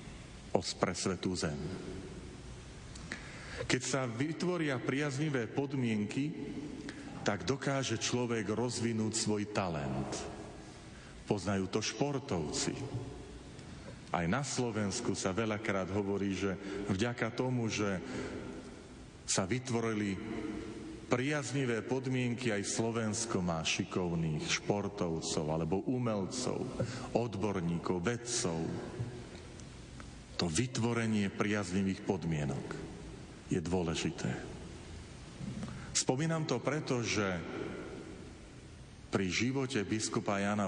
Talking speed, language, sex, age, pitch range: 80 wpm, Slovak, male, 40-59, 95-120 Hz